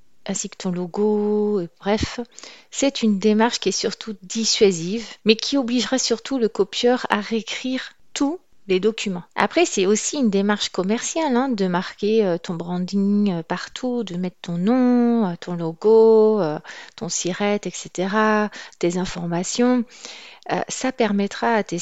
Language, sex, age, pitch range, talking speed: French, female, 40-59, 190-230 Hz, 155 wpm